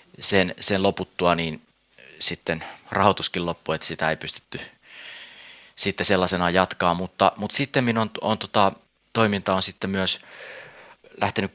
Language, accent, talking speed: Finnish, native, 130 wpm